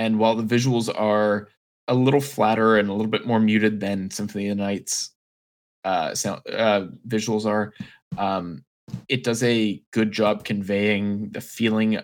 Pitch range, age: 100-115 Hz, 20-39